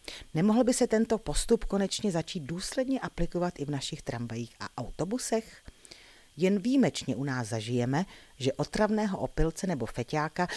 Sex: female